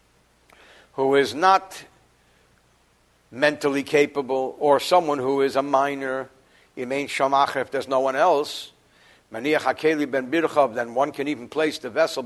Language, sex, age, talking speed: English, male, 60-79, 115 wpm